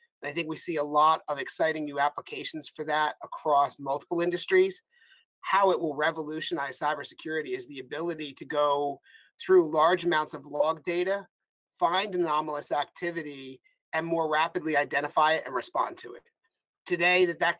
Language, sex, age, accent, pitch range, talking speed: English, male, 30-49, American, 155-195 Hz, 155 wpm